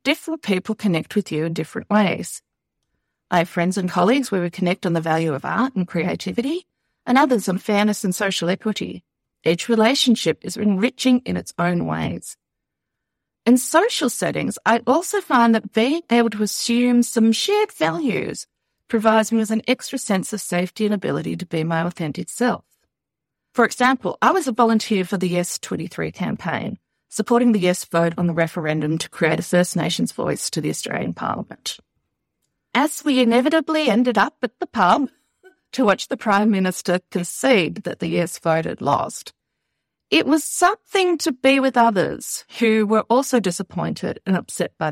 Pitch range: 185-255 Hz